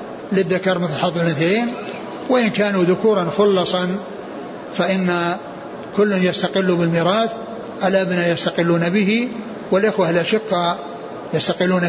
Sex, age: male, 60-79